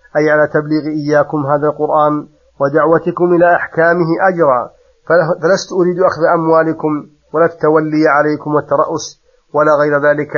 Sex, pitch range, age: male, 150-175 Hz, 30-49